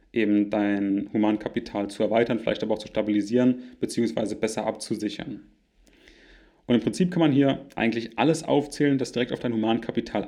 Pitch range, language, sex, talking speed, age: 115-140 Hz, German, male, 160 wpm, 30-49